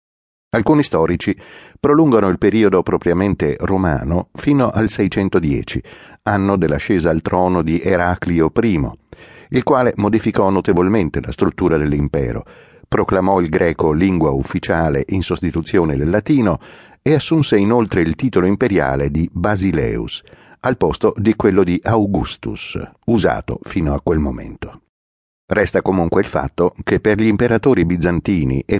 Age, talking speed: 50-69, 130 wpm